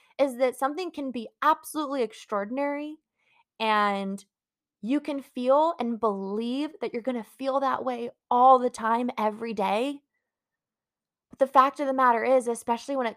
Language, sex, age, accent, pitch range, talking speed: English, female, 20-39, American, 215-275 Hz, 155 wpm